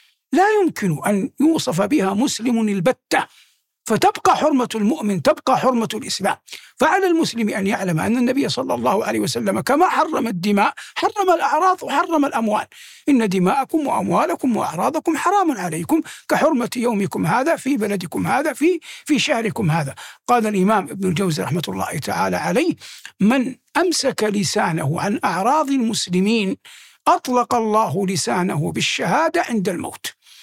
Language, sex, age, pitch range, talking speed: Arabic, male, 60-79, 210-310 Hz, 130 wpm